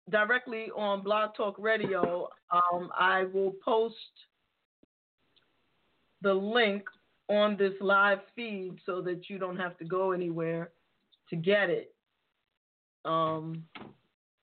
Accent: American